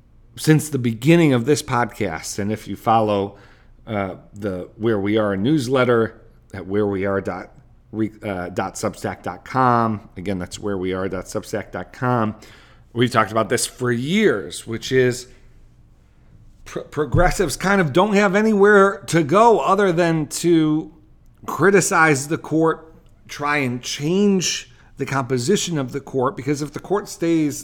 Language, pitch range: English, 110-145 Hz